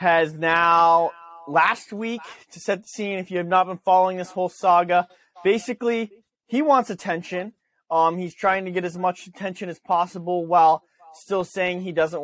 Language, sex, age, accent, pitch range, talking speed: English, male, 20-39, American, 150-195 Hz, 175 wpm